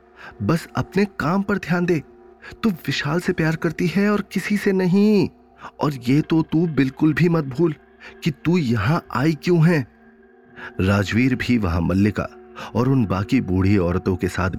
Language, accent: Hindi, native